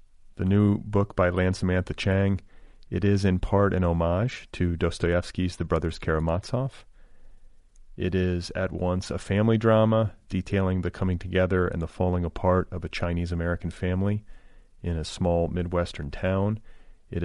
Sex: male